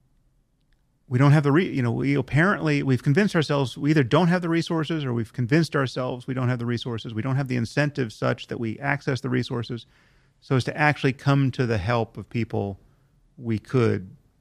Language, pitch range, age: English, 120-145 Hz, 40-59